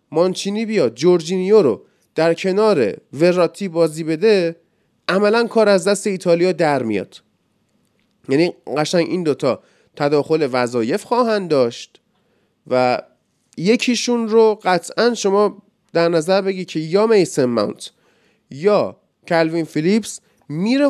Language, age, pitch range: Persian, 30-49, 160-215 Hz